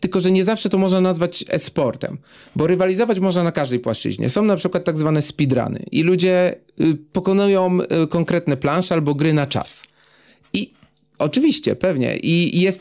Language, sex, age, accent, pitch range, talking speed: Polish, male, 40-59, native, 140-170 Hz, 160 wpm